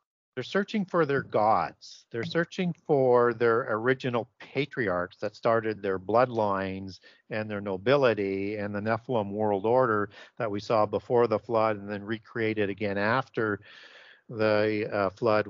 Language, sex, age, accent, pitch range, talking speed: English, male, 50-69, American, 105-125 Hz, 140 wpm